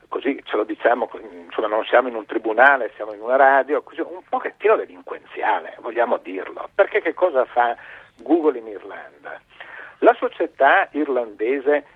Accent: native